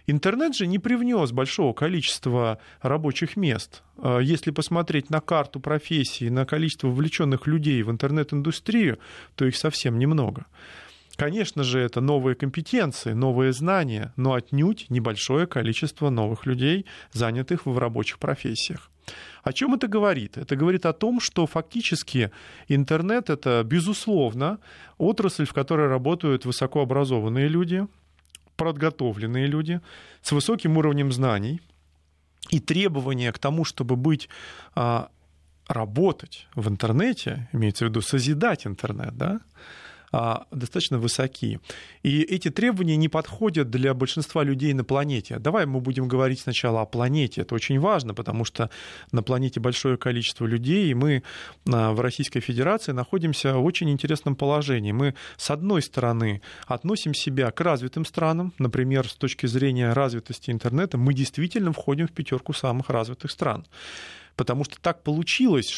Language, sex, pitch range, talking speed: Russian, male, 125-160 Hz, 135 wpm